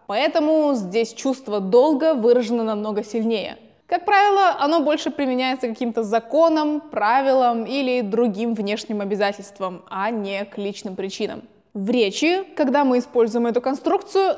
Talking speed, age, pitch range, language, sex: 130 wpm, 20-39, 225-310 Hz, Russian, female